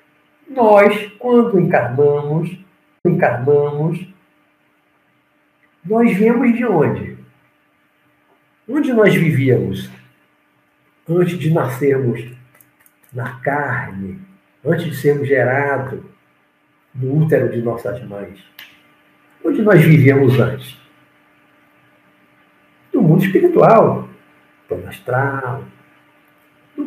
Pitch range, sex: 125-200 Hz, male